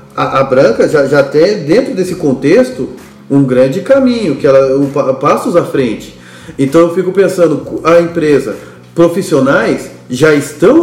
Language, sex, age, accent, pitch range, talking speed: Portuguese, male, 40-59, Brazilian, 130-175 Hz, 155 wpm